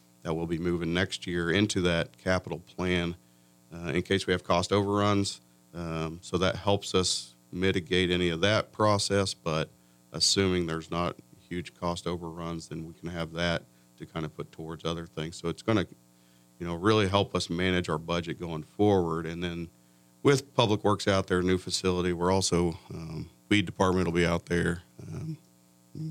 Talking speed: 180 wpm